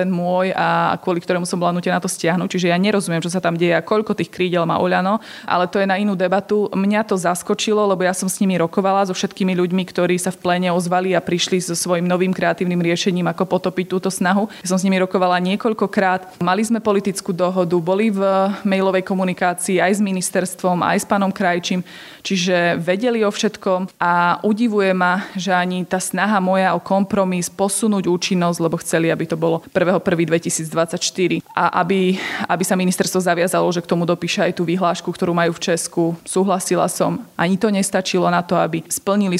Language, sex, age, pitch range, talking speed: Slovak, female, 20-39, 175-195 Hz, 195 wpm